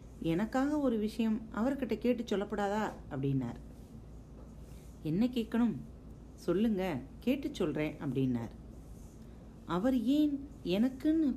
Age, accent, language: 40-59, native, Tamil